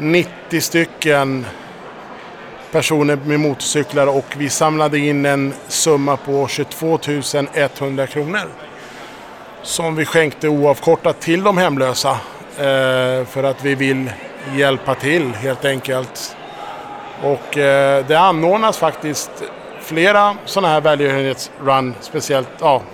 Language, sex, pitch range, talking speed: Swedish, male, 135-155 Hz, 100 wpm